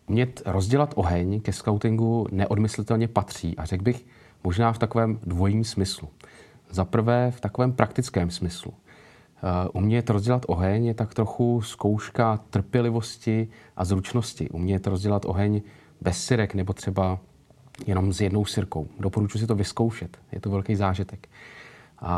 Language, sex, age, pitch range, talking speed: Czech, male, 30-49, 95-115 Hz, 135 wpm